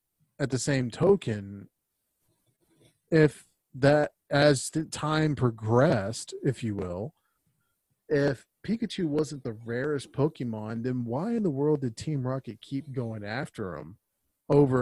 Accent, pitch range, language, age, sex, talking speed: American, 115-150 Hz, English, 30-49, male, 130 wpm